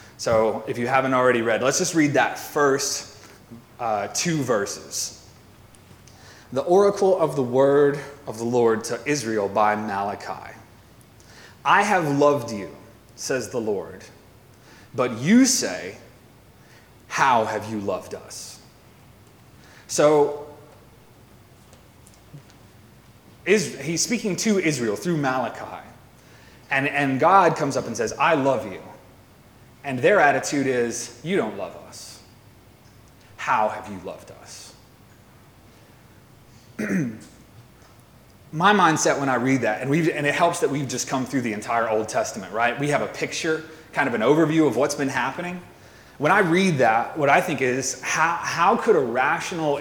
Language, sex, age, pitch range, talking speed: English, male, 30-49, 110-150 Hz, 140 wpm